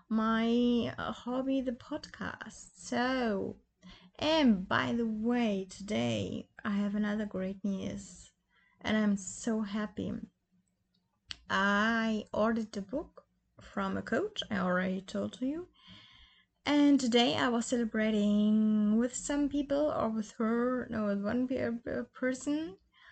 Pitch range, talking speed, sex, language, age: 205-260 Hz, 115 wpm, female, English, 20-39